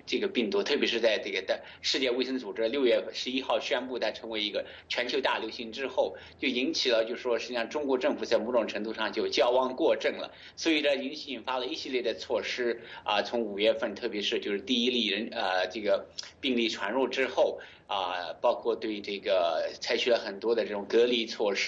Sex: male